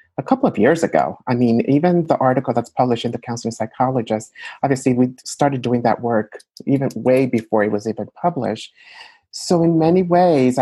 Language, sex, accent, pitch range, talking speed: English, male, American, 115-140 Hz, 185 wpm